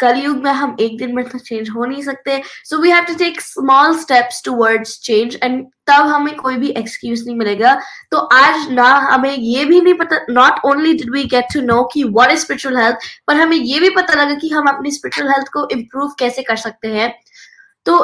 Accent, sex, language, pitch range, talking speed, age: native, female, Hindi, 245-300 Hz, 145 wpm, 20-39